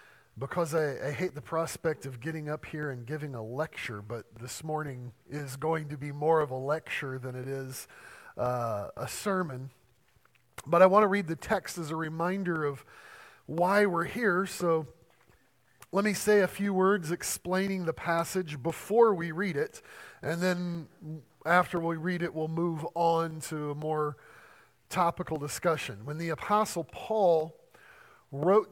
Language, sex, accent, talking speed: English, male, American, 165 wpm